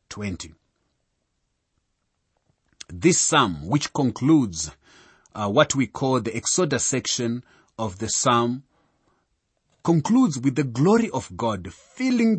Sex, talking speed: male, 105 wpm